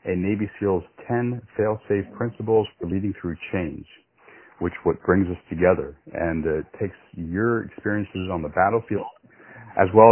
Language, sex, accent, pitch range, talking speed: English, male, American, 80-100 Hz, 150 wpm